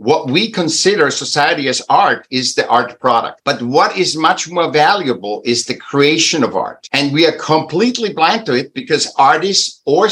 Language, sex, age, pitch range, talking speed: English, male, 60-79, 135-185 Hz, 185 wpm